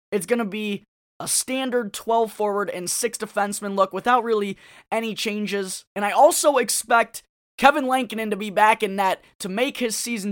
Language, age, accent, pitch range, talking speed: English, 20-39, American, 190-230 Hz, 180 wpm